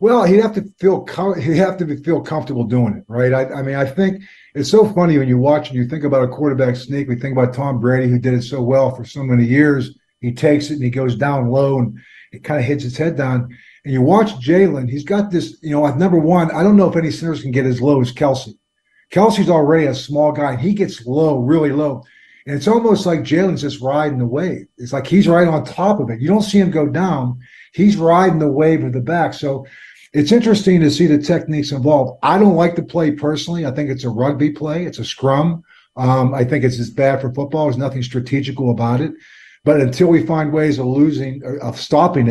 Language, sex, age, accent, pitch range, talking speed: English, male, 50-69, American, 130-165 Hz, 245 wpm